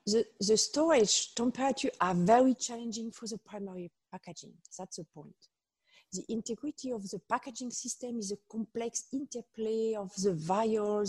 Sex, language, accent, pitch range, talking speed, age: female, English, French, 190-240 Hz, 145 wpm, 40-59